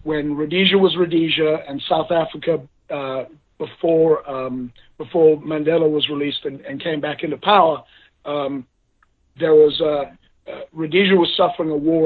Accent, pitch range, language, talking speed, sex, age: American, 150-175 Hz, English, 150 wpm, male, 50-69